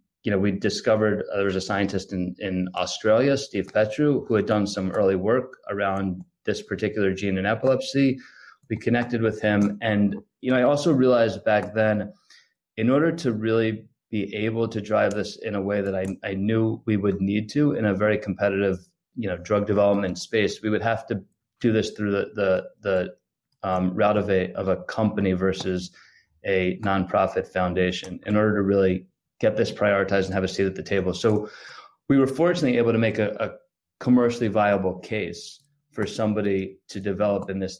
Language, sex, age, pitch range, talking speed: English, male, 20-39, 95-120 Hz, 190 wpm